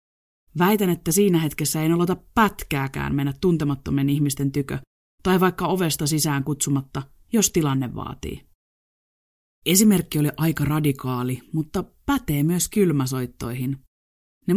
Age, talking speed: 30-49, 115 wpm